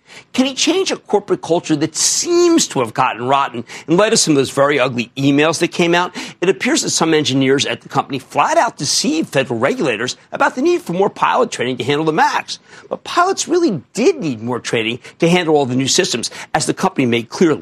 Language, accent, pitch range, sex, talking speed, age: English, American, 130-210 Hz, male, 225 wpm, 50-69